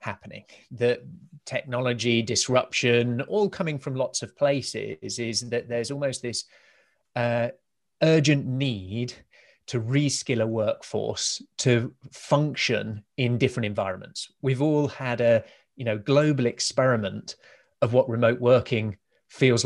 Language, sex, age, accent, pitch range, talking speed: English, male, 30-49, British, 115-135 Hz, 120 wpm